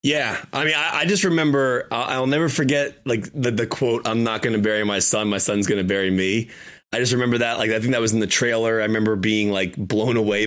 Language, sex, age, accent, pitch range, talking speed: English, male, 30-49, American, 100-115 Hz, 260 wpm